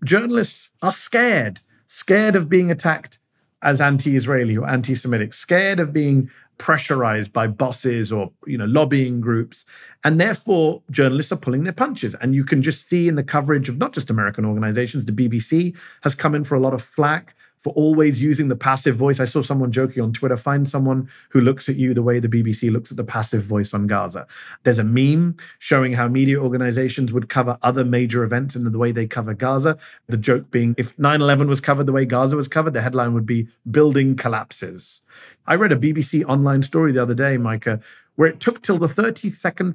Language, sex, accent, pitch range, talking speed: English, male, British, 125-160 Hz, 200 wpm